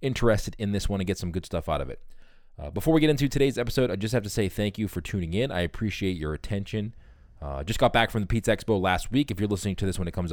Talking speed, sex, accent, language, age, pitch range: 295 wpm, male, American, English, 20-39, 85-110 Hz